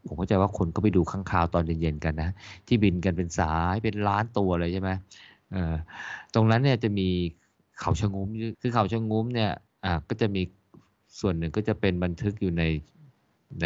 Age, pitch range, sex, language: 20-39, 85-105 Hz, male, Thai